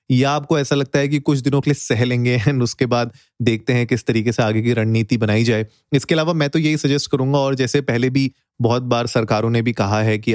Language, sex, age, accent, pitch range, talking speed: Hindi, male, 30-49, native, 115-135 Hz, 255 wpm